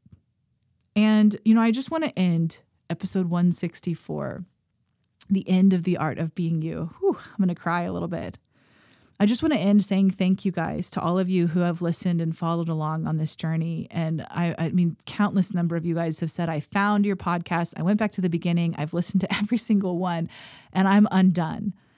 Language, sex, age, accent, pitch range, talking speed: English, female, 30-49, American, 165-195 Hz, 215 wpm